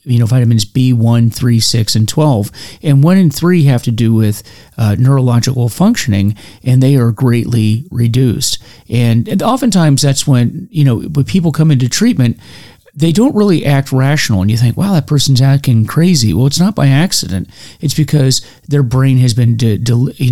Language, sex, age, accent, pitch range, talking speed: English, male, 40-59, American, 110-140 Hz, 190 wpm